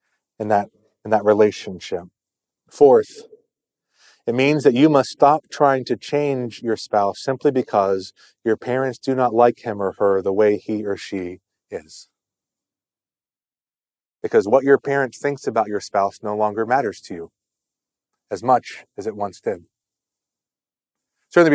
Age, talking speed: 30-49, 150 wpm